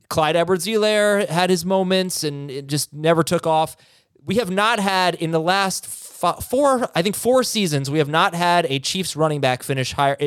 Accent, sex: American, male